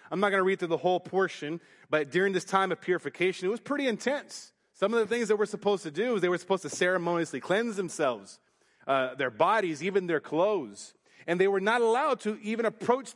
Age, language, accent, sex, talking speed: 30-49, English, American, male, 230 wpm